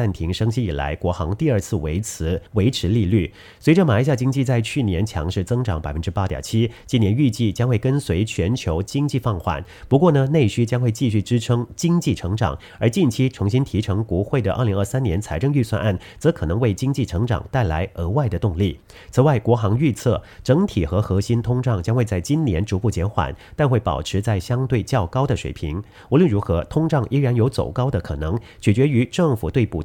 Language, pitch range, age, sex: English, 95-130 Hz, 40-59, male